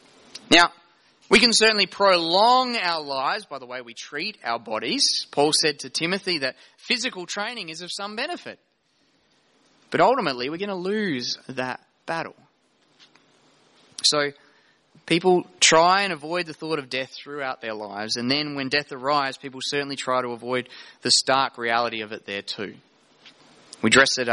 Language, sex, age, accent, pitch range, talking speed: English, male, 20-39, Australian, 115-160 Hz, 160 wpm